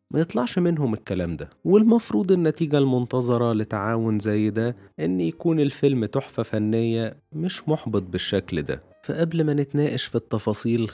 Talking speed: 135 wpm